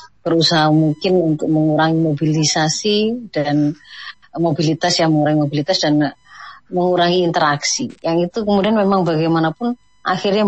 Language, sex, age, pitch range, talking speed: Indonesian, female, 30-49, 150-170 Hz, 110 wpm